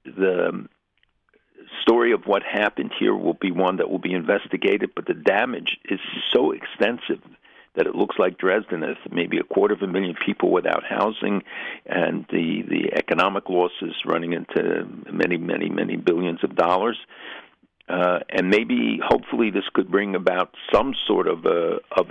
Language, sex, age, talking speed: English, male, 60-79, 165 wpm